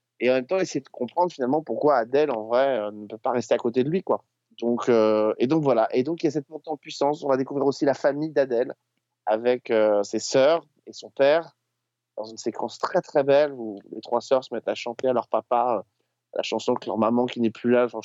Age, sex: 30-49, male